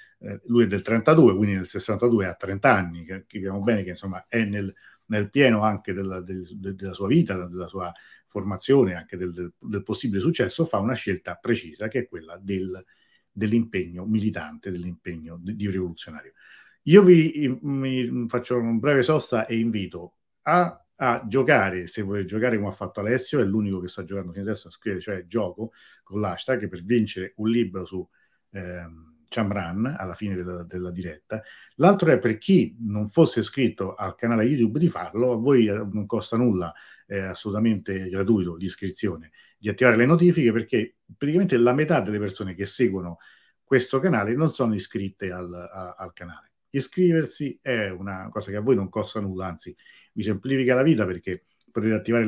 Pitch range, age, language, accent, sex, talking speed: 95-120 Hz, 50-69, Italian, native, male, 170 wpm